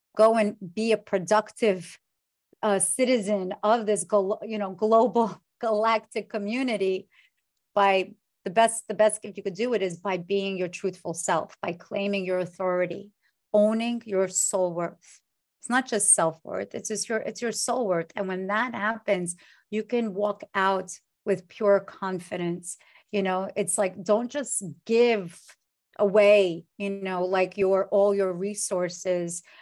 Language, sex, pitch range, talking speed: English, female, 185-215 Hz, 150 wpm